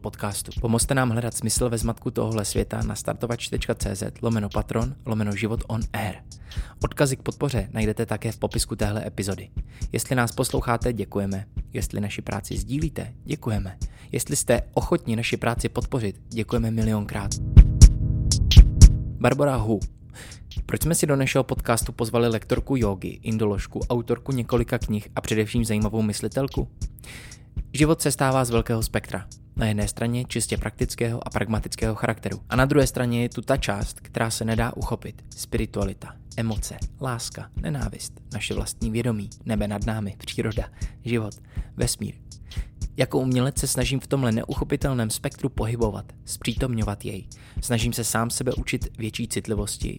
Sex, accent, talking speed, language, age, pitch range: male, native, 145 wpm, Czech, 20-39, 105-125 Hz